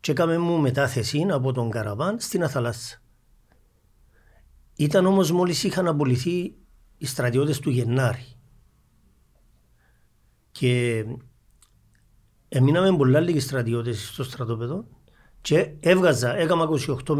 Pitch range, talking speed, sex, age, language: 120-170 Hz, 100 wpm, male, 50-69, Greek